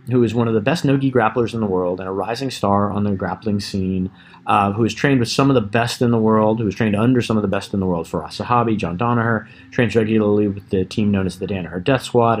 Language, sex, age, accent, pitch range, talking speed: English, male, 30-49, American, 100-125 Hz, 275 wpm